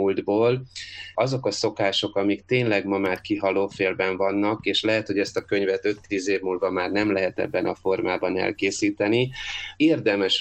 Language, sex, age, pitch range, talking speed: Hungarian, male, 30-49, 95-105 Hz, 155 wpm